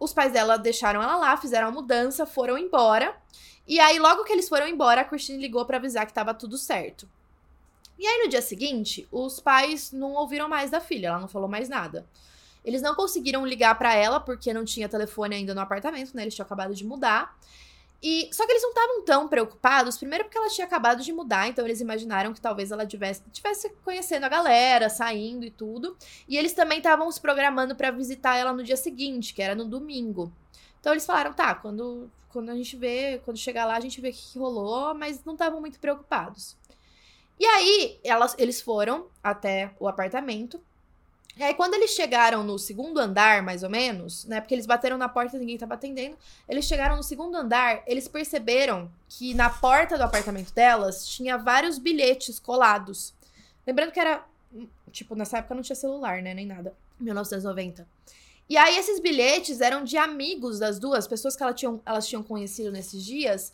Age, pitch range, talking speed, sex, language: 10-29, 220-295 Hz, 200 wpm, female, Portuguese